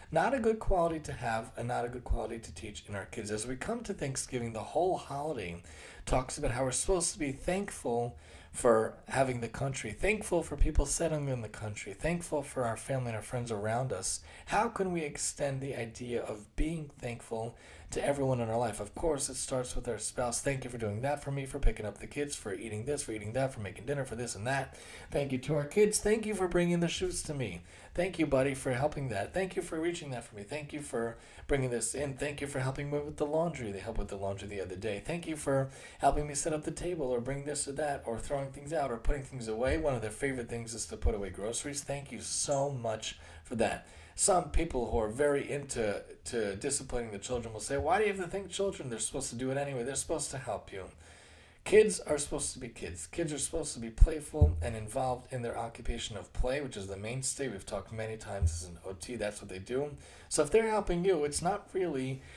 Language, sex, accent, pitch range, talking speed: English, male, American, 115-150 Hz, 245 wpm